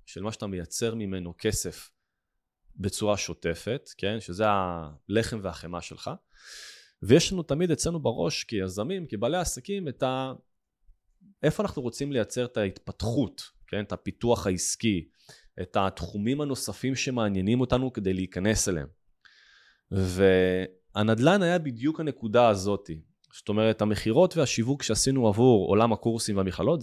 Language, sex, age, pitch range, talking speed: Hebrew, male, 20-39, 95-130 Hz, 125 wpm